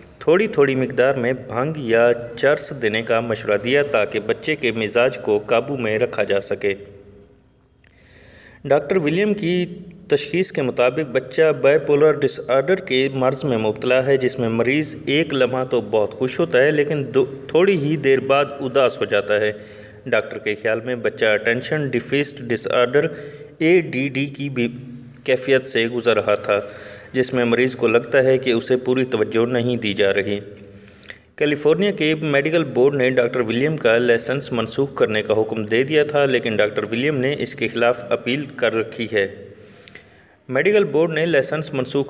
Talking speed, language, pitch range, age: 170 wpm, Urdu, 115-145 Hz, 20-39